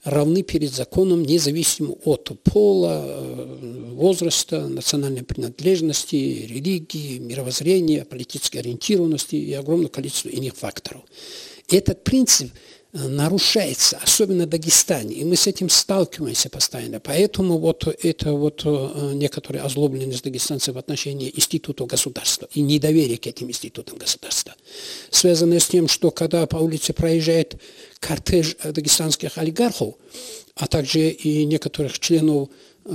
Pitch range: 140-175 Hz